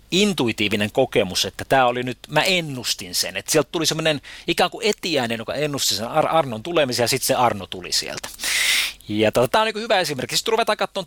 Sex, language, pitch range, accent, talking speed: male, Finnish, 110-155 Hz, native, 205 wpm